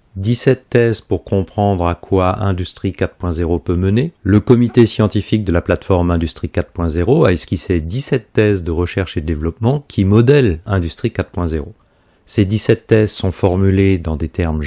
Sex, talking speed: male, 160 wpm